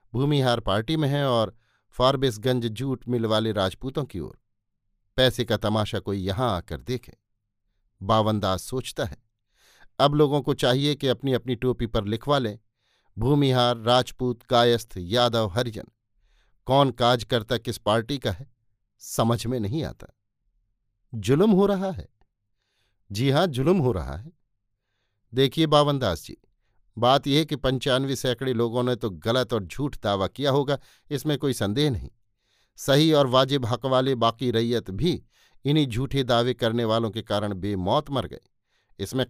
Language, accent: Hindi, native